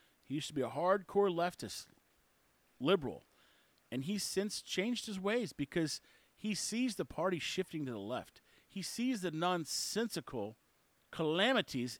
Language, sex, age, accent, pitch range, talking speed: English, male, 40-59, American, 145-200 Hz, 140 wpm